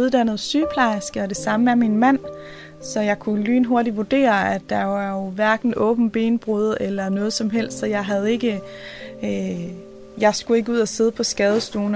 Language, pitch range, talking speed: Danish, 195-235 Hz, 185 wpm